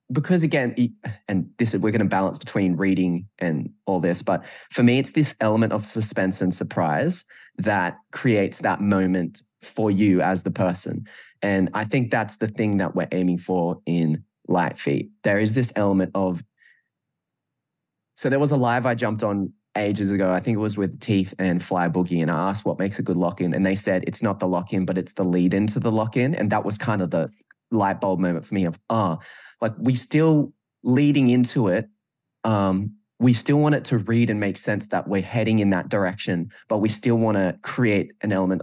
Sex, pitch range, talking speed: male, 95-120 Hz, 215 wpm